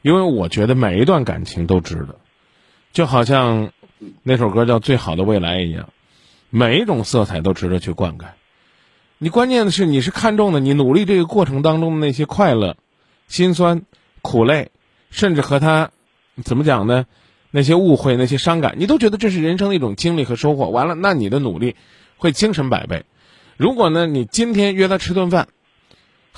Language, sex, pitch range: Chinese, male, 120-170 Hz